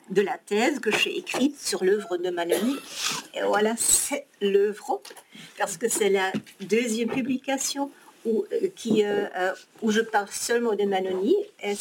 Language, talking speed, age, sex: French, 140 wpm, 50-69, female